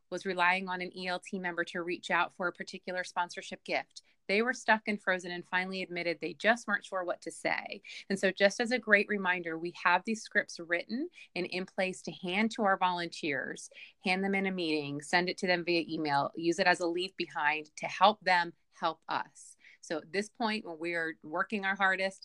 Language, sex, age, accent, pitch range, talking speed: English, female, 30-49, American, 170-210 Hz, 215 wpm